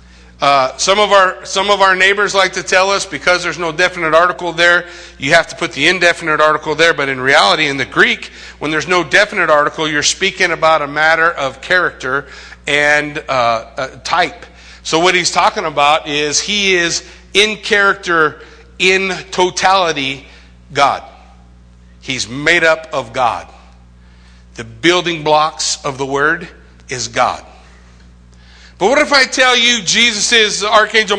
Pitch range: 125-195 Hz